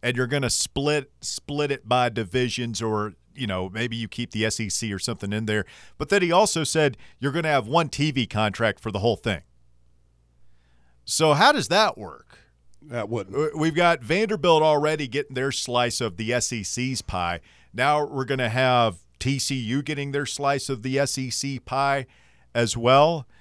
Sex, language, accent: male, English, American